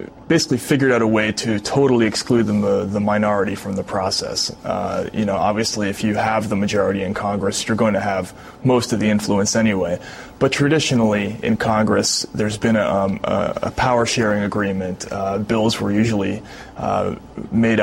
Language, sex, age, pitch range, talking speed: English, male, 30-49, 100-115 Hz, 170 wpm